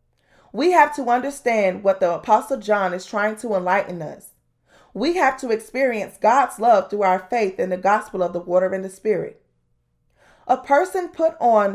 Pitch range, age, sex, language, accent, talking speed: 190-265 Hz, 20-39, female, English, American, 180 wpm